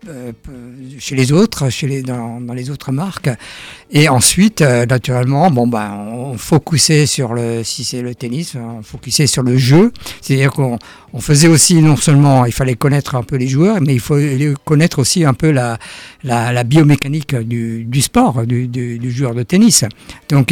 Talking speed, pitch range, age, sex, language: 195 wpm, 125-150 Hz, 50-69, male, French